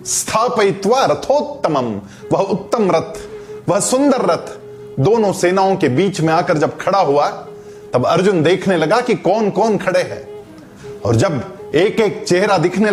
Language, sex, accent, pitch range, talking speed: English, male, Indian, 155-215 Hz, 135 wpm